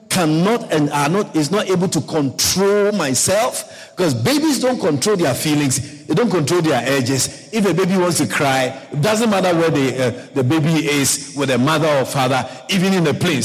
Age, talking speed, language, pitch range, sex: 50-69, 200 wpm, English, 155-235 Hz, male